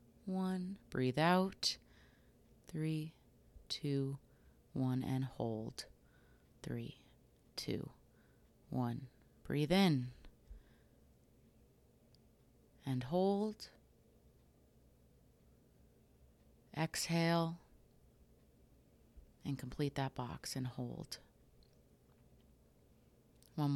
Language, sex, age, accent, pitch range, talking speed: English, female, 30-49, American, 130-165 Hz, 60 wpm